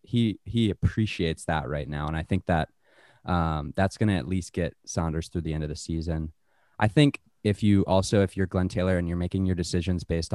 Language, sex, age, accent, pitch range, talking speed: English, male, 20-39, American, 85-100 Hz, 225 wpm